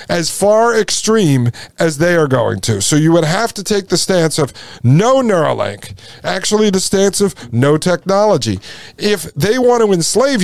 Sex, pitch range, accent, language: male, 150-215 Hz, American, English